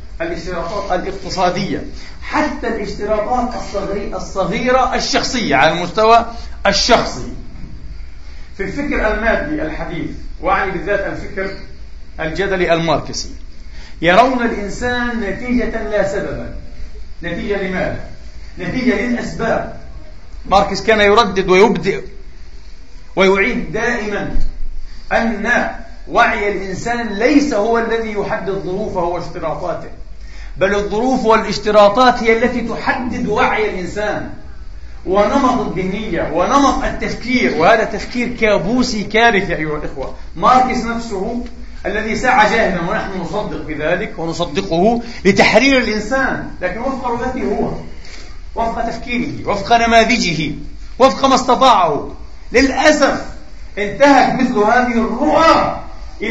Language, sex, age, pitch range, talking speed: Arabic, male, 40-59, 180-235 Hz, 95 wpm